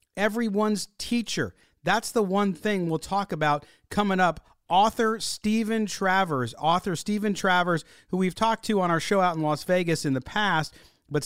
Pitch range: 140-190 Hz